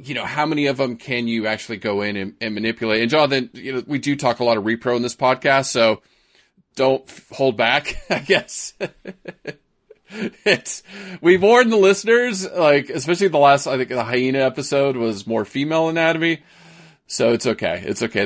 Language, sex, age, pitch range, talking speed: English, male, 30-49, 105-145 Hz, 190 wpm